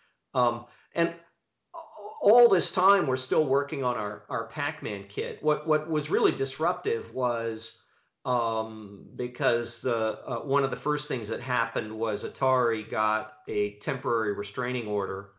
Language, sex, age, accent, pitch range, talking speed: English, male, 40-59, American, 105-140 Hz, 145 wpm